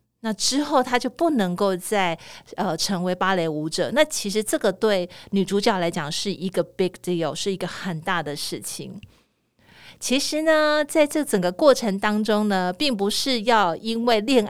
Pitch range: 175-230 Hz